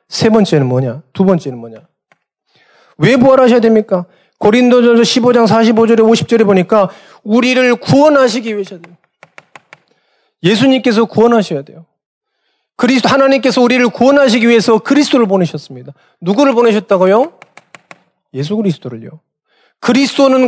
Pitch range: 190-270 Hz